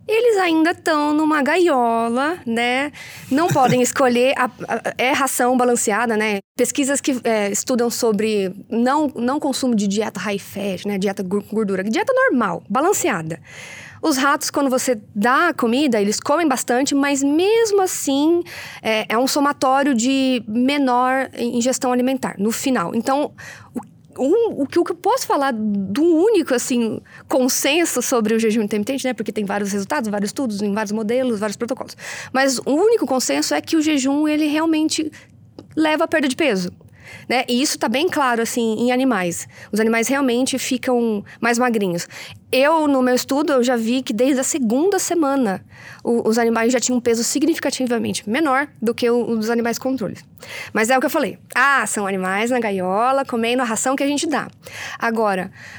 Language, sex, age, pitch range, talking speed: English, female, 20-39, 225-280 Hz, 175 wpm